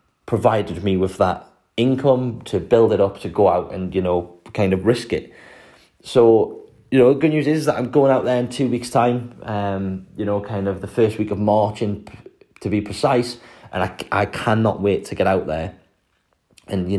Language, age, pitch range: English, 30-49, 95-115 Hz